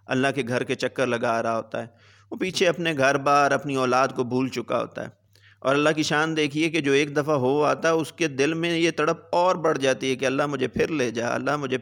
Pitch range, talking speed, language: 130-165 Hz, 260 wpm, Urdu